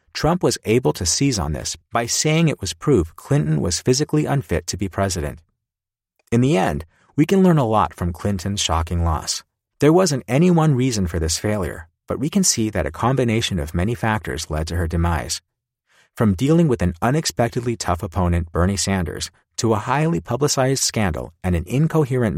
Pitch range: 90-135 Hz